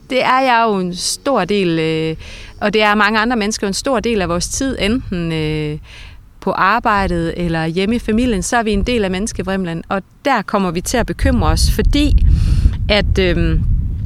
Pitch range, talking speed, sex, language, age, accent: 175-230 Hz, 185 wpm, female, Danish, 30-49, native